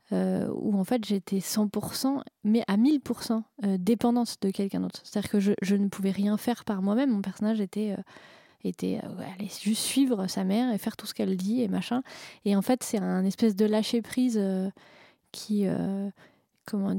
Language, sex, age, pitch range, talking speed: French, female, 20-39, 200-230 Hz, 200 wpm